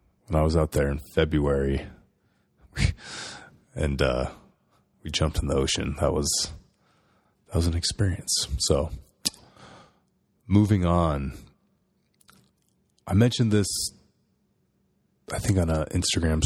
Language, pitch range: English, 80-100 Hz